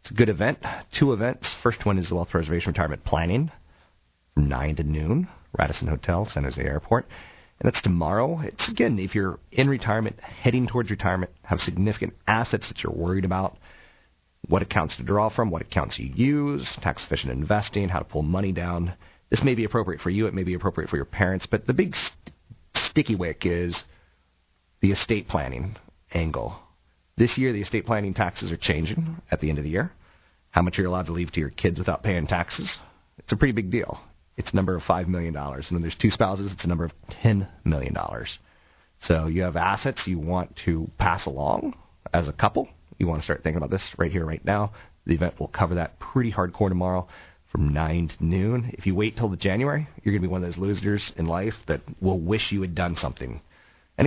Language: English